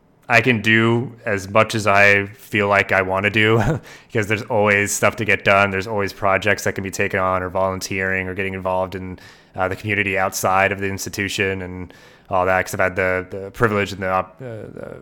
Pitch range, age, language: 95-100 Hz, 20-39, English